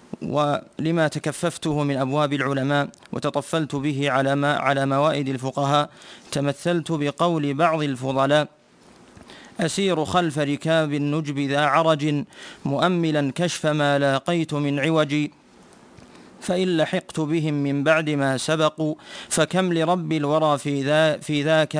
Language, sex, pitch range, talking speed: Arabic, male, 140-160 Hz, 115 wpm